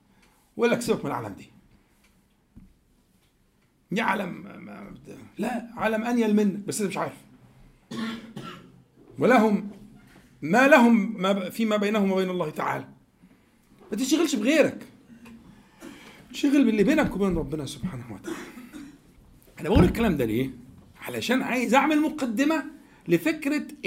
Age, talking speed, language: 50-69, 115 wpm, Arabic